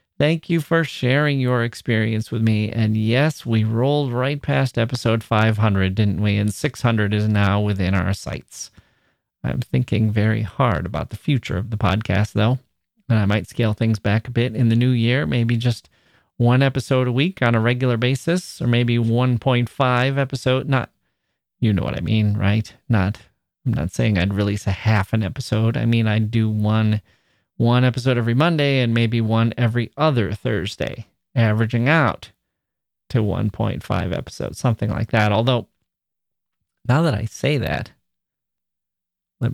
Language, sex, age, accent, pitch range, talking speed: English, male, 30-49, American, 105-130 Hz, 165 wpm